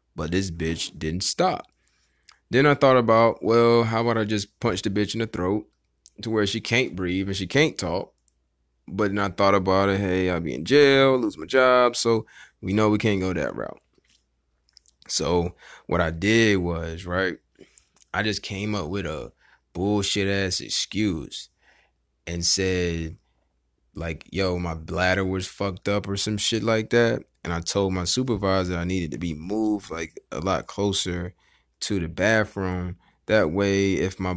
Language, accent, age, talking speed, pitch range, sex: English, American, 20-39, 175 wpm, 85-110 Hz, male